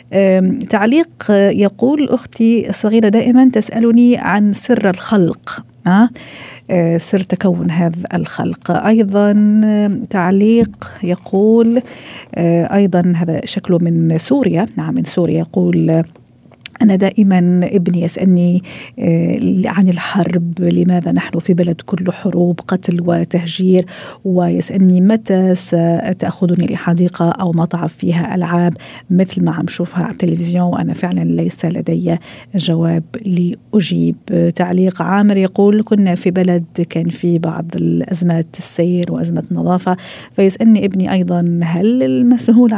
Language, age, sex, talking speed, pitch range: Arabic, 40-59, female, 110 wpm, 175-215 Hz